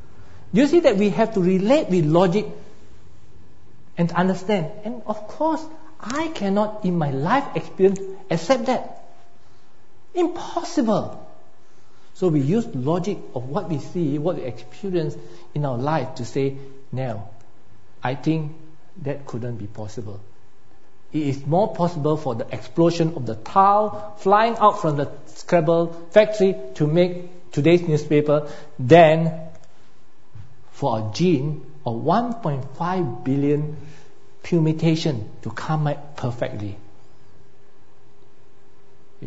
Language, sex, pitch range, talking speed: English, male, 130-185 Hz, 120 wpm